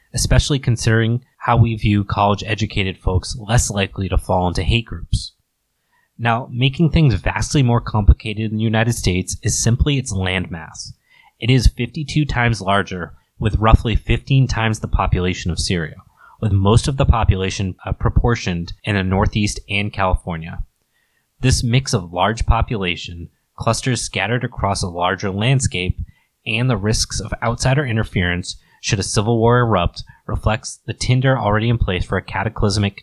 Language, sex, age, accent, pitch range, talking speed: English, male, 20-39, American, 95-120 Hz, 150 wpm